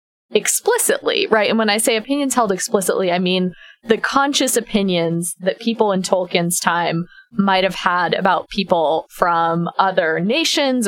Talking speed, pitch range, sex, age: 150 wpm, 185-240 Hz, female, 20-39